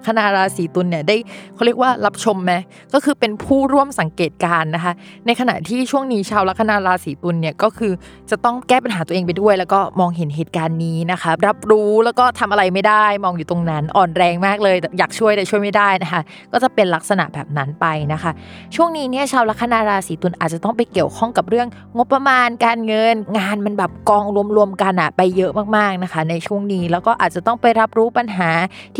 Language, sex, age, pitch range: Thai, female, 20-39, 175-230 Hz